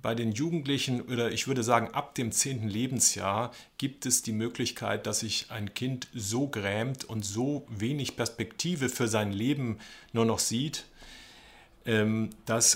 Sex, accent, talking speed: male, German, 150 wpm